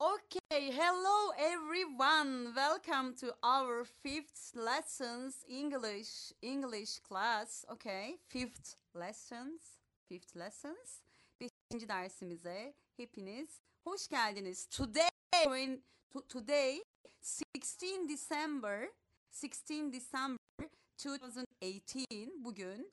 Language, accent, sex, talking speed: Turkish, native, female, 75 wpm